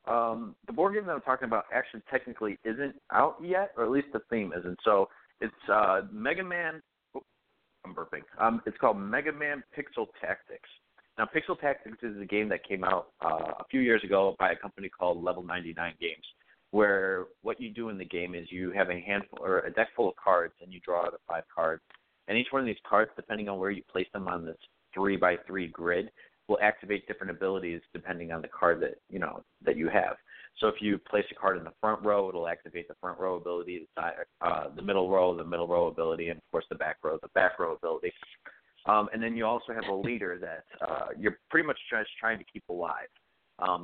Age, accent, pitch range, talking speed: 30-49, American, 90-130 Hz, 225 wpm